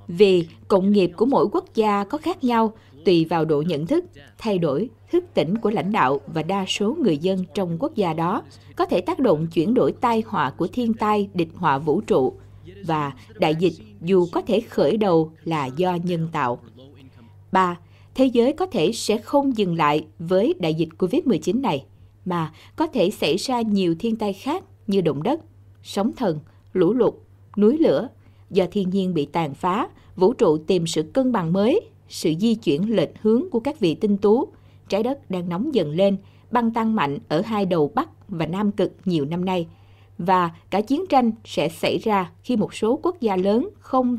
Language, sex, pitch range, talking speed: Vietnamese, female, 155-225 Hz, 200 wpm